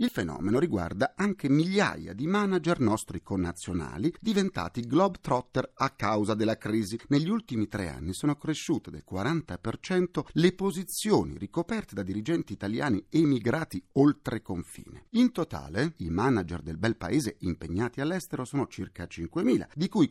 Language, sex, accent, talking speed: Italian, male, native, 135 wpm